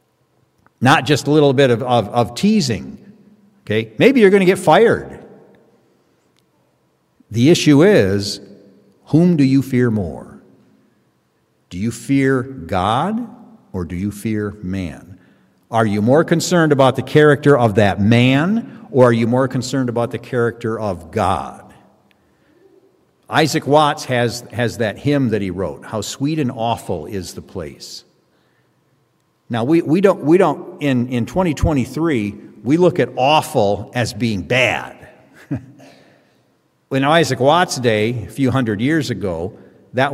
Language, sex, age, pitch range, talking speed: English, male, 50-69, 110-150 Hz, 140 wpm